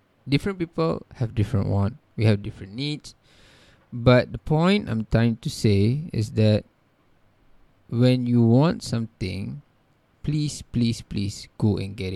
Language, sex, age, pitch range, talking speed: English, male, 20-39, 105-150 Hz, 140 wpm